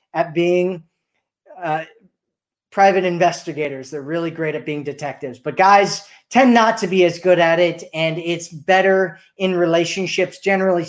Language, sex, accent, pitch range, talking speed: English, male, American, 155-190 Hz, 150 wpm